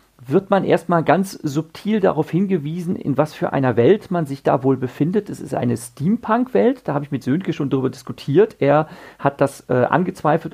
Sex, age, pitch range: male, 40-59, 135-185 Hz